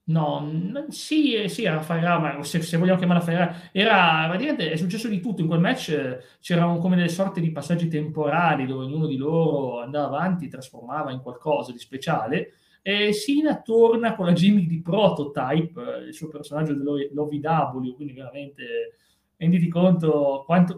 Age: 30-49